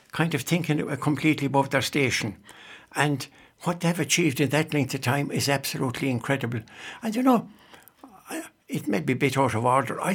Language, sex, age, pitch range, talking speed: English, male, 60-79, 130-165 Hz, 190 wpm